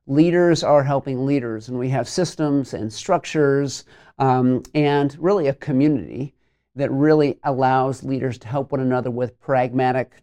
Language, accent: English, American